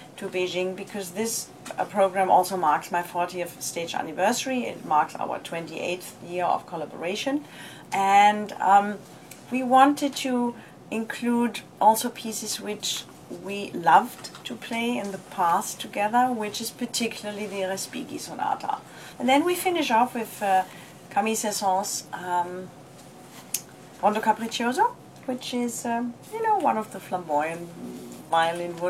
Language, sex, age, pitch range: Chinese, female, 30-49, 175-230 Hz